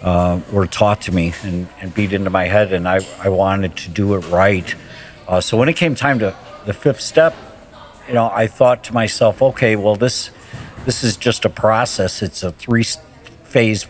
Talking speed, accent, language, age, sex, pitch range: 205 wpm, American, English, 60-79, male, 95-110 Hz